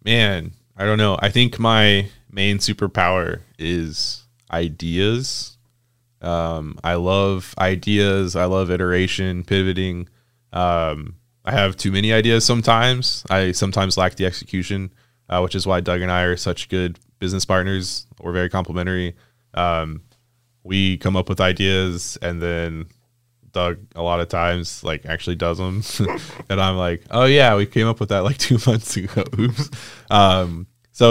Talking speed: 150 wpm